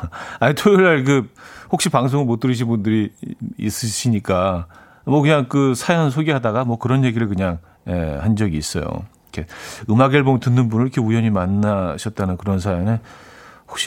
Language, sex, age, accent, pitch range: Korean, male, 40-59, native, 95-150 Hz